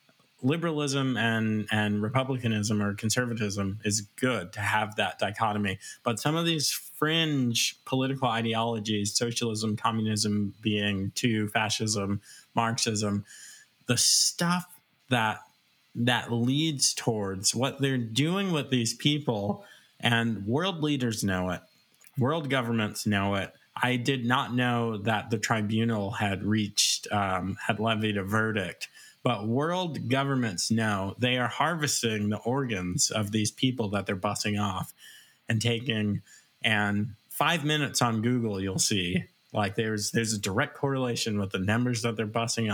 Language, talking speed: English, 135 wpm